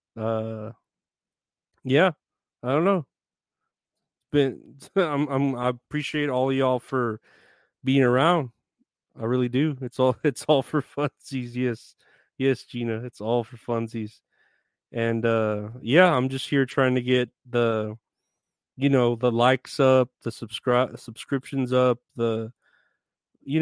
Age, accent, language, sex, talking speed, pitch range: 30-49, American, English, male, 130 wpm, 115-130 Hz